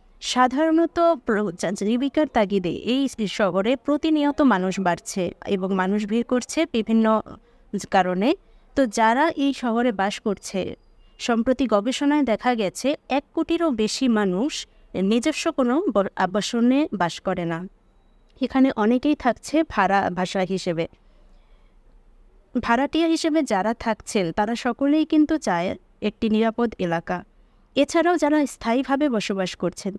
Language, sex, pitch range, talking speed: English, female, 200-280 Hz, 110 wpm